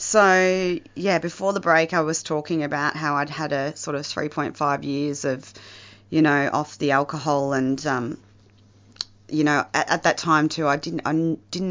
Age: 30-49